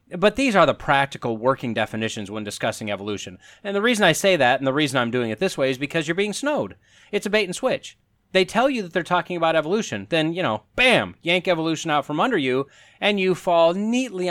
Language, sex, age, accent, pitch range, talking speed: English, male, 30-49, American, 125-185 Hz, 225 wpm